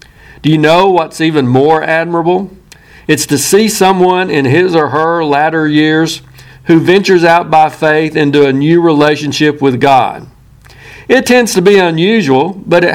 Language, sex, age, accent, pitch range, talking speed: English, male, 50-69, American, 140-175 Hz, 160 wpm